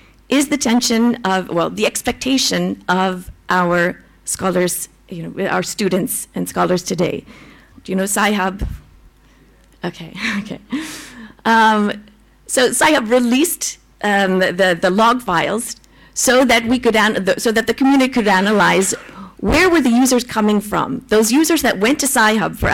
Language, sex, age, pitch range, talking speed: English, female, 40-59, 190-245 Hz, 145 wpm